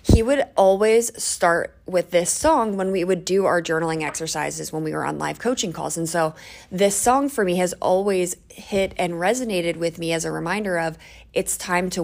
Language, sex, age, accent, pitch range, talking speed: English, female, 20-39, American, 165-200 Hz, 205 wpm